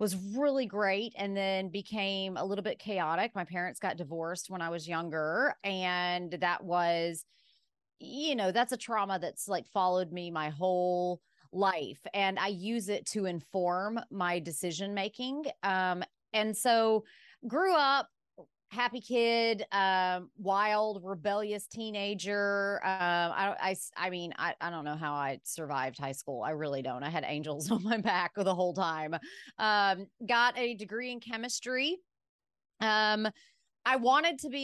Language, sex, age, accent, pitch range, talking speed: English, female, 30-49, American, 180-220 Hz, 150 wpm